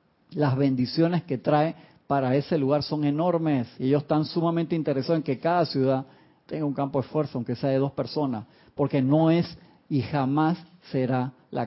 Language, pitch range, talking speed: Spanish, 135-165 Hz, 180 wpm